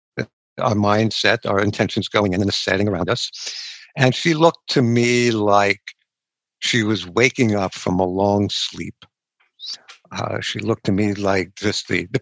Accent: American